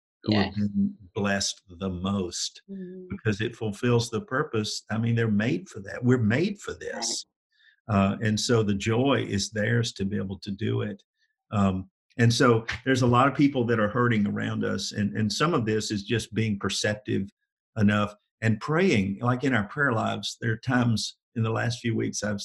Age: 50-69